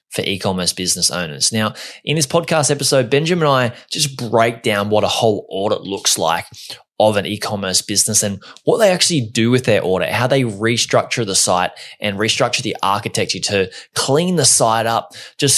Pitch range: 100-125 Hz